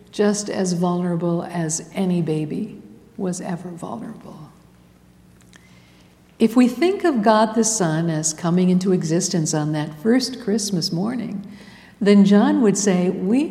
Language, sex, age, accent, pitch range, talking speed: English, female, 60-79, American, 160-220 Hz, 135 wpm